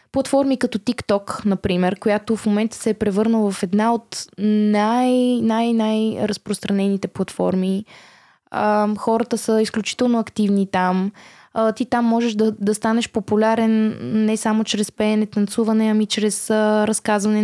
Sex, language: female, Bulgarian